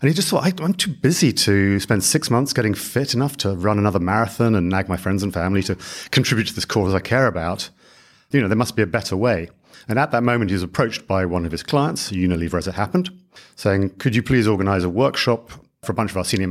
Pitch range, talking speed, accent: 90-120 Hz, 255 wpm, British